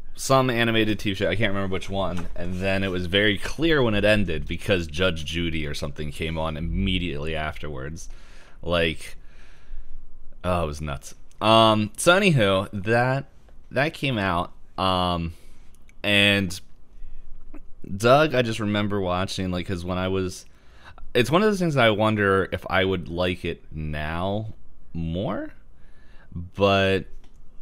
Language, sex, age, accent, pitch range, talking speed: English, male, 20-39, American, 80-105 Hz, 145 wpm